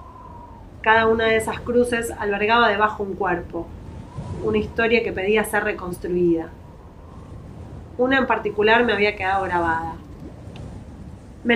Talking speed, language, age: 120 wpm, Spanish, 20-39